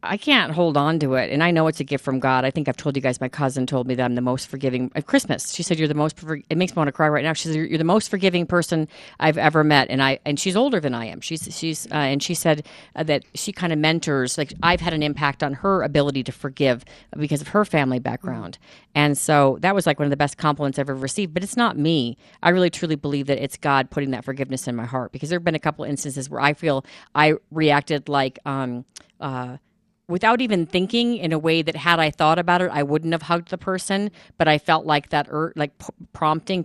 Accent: American